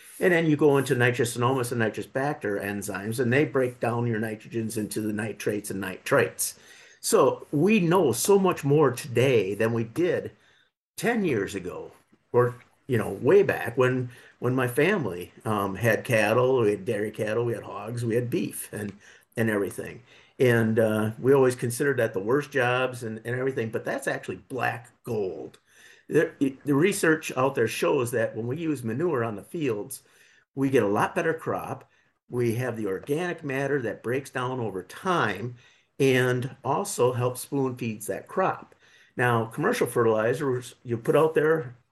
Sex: male